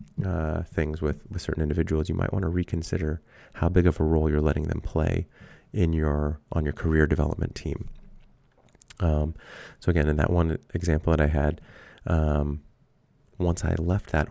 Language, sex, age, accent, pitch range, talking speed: English, male, 30-49, American, 80-95 Hz, 175 wpm